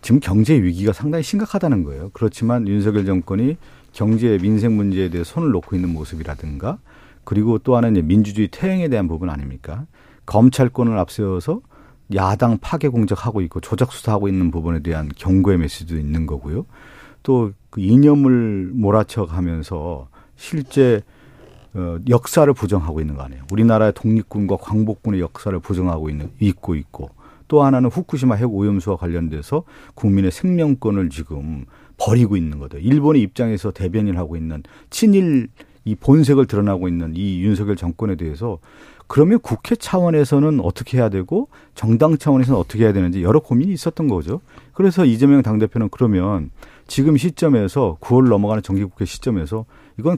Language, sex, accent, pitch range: Korean, male, native, 90-130 Hz